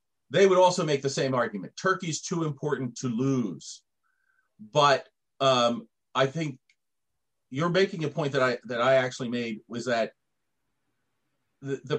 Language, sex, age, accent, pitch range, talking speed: Turkish, male, 40-59, American, 125-170 Hz, 145 wpm